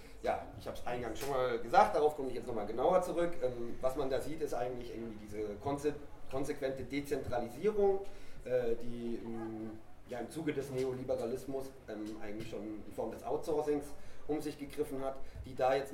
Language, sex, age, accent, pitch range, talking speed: German, male, 30-49, German, 110-140 Hz, 165 wpm